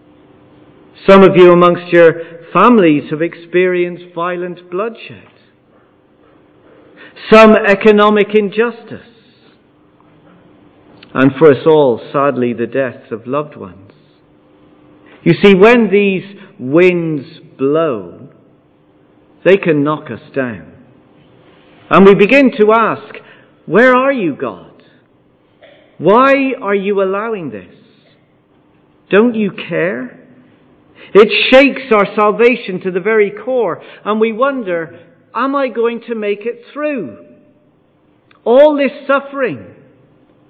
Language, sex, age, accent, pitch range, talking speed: English, male, 50-69, British, 145-225 Hz, 105 wpm